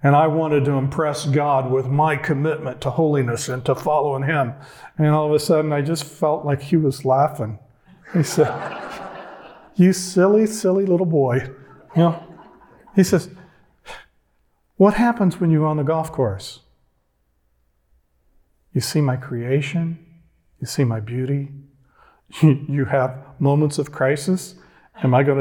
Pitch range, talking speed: 130-175 Hz, 145 wpm